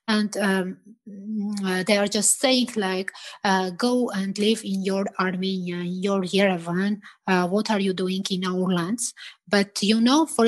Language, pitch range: English, 185-220 Hz